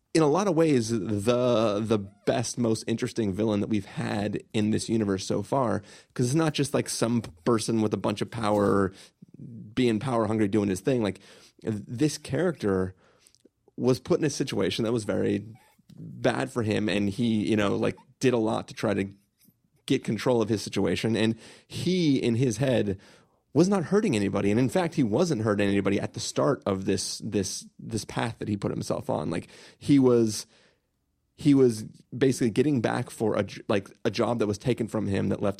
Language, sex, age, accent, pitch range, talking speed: English, male, 30-49, American, 105-140 Hz, 195 wpm